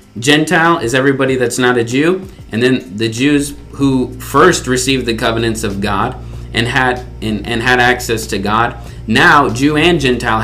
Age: 30-49